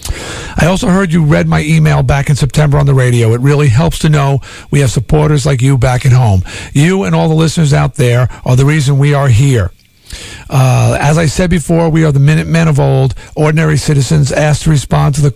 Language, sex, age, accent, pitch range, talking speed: English, male, 50-69, American, 125-150 Hz, 225 wpm